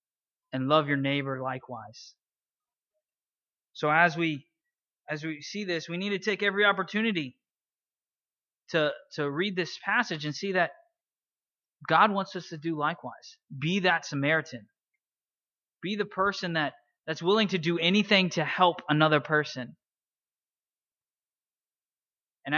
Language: English